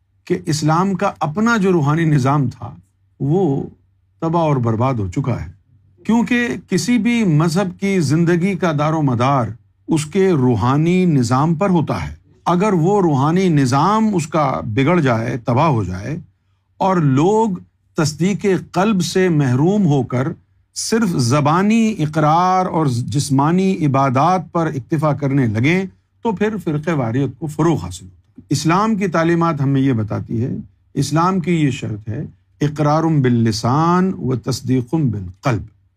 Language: Urdu